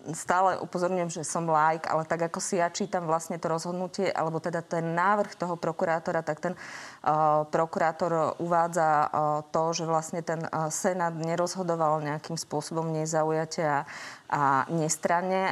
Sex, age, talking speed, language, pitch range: female, 20-39, 155 wpm, Slovak, 155-175 Hz